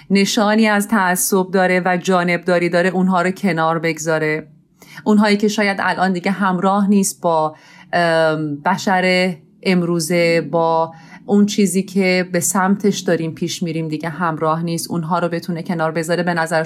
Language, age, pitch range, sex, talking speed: Persian, 30-49, 165-205 Hz, female, 145 wpm